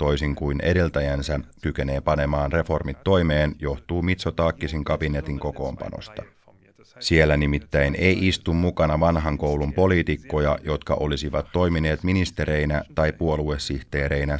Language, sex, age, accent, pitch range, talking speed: Finnish, male, 30-49, native, 70-85 Hz, 105 wpm